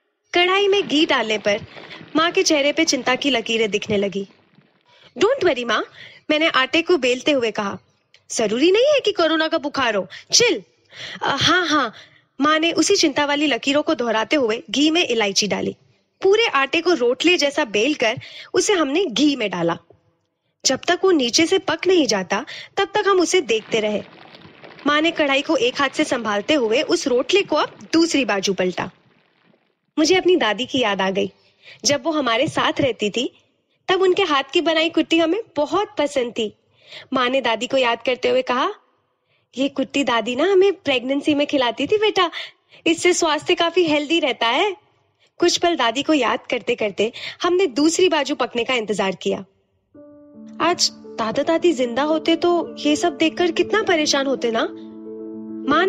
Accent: native